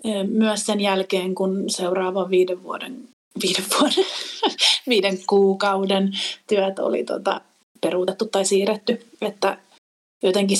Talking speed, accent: 110 wpm, native